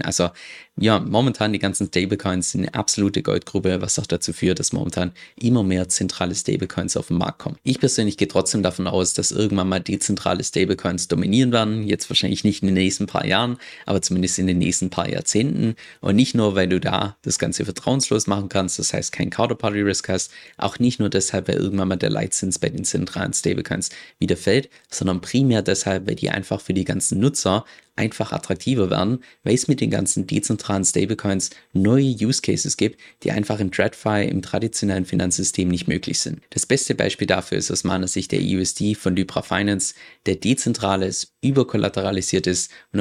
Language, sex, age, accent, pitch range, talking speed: German, male, 20-39, German, 95-110 Hz, 195 wpm